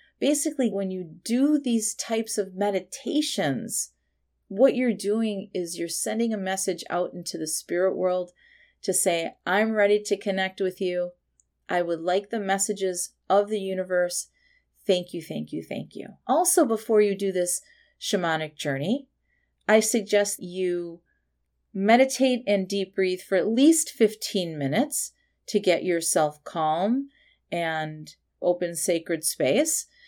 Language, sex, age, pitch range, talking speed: English, female, 30-49, 175-225 Hz, 140 wpm